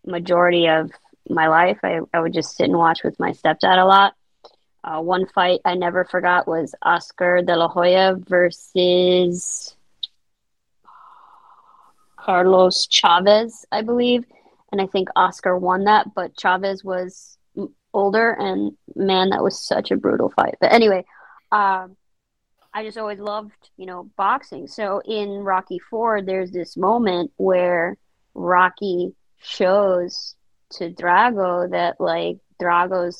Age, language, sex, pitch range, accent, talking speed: 20-39, English, female, 175-200 Hz, American, 140 wpm